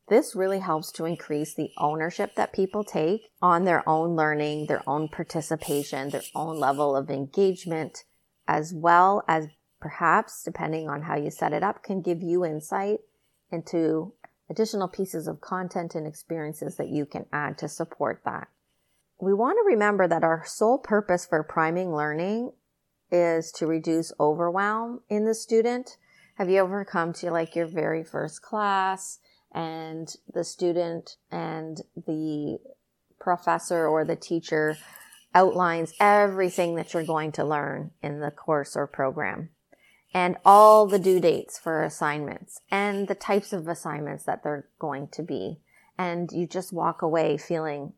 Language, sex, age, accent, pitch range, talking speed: English, female, 30-49, American, 155-190 Hz, 155 wpm